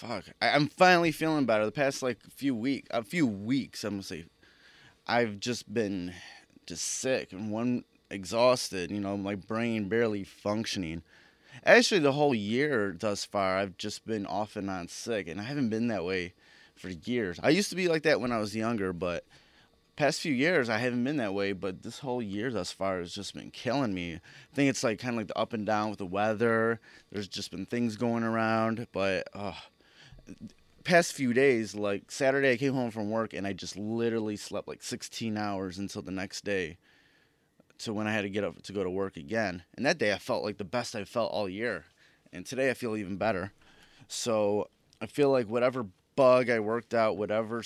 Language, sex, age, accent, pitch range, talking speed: English, male, 20-39, American, 100-120 Hz, 210 wpm